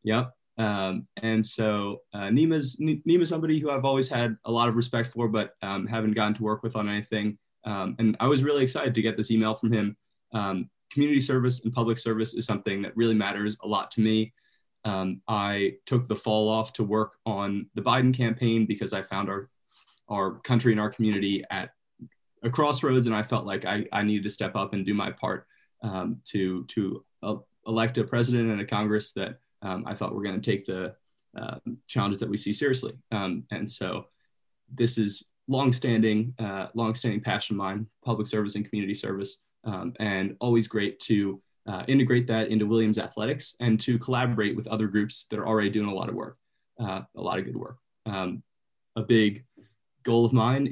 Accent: American